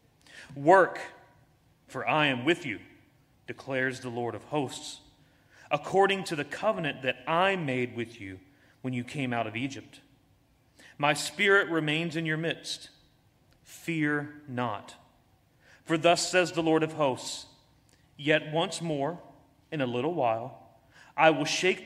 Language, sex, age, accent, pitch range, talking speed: English, male, 30-49, American, 125-155 Hz, 140 wpm